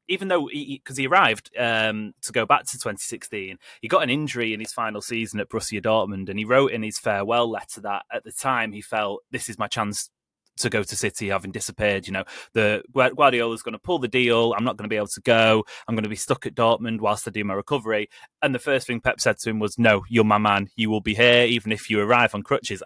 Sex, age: male, 20-39